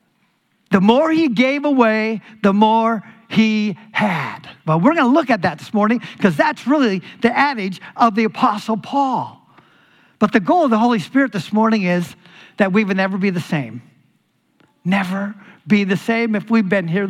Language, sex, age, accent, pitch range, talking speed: English, male, 50-69, American, 190-245 Hz, 185 wpm